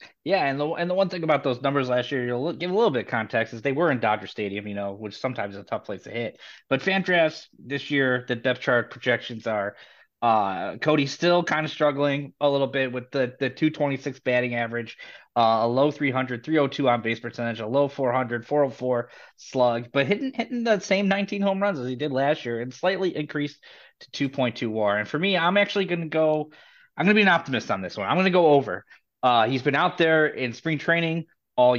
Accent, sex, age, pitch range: American, male, 20-39, 125-160 Hz